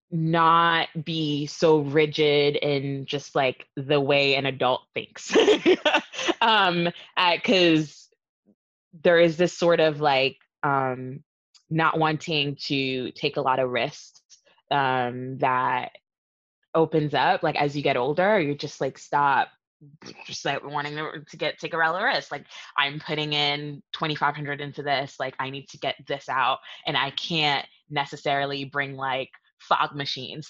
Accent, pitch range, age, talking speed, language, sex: American, 140-165 Hz, 20-39, 145 wpm, English, female